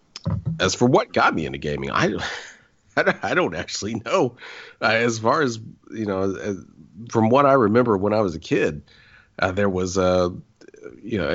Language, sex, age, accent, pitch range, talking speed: English, male, 40-59, American, 95-115 Hz, 185 wpm